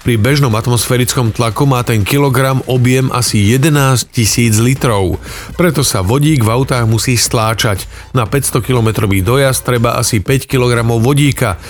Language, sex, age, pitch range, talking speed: Slovak, male, 40-59, 115-140 Hz, 140 wpm